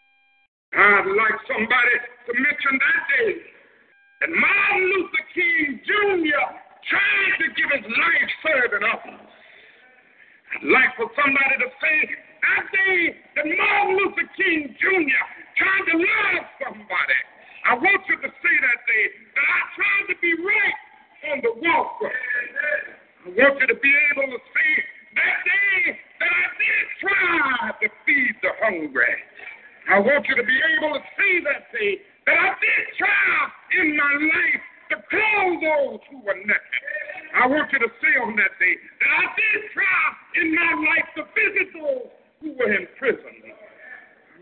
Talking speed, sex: 155 wpm, male